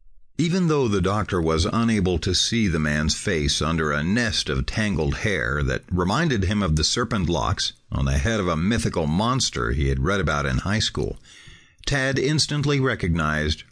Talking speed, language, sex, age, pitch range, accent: 180 wpm, English, male, 50-69, 80-110 Hz, American